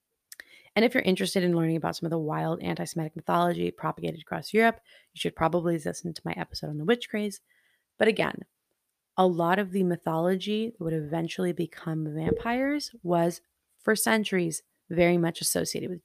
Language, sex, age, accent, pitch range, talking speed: English, female, 30-49, American, 170-225 Hz, 170 wpm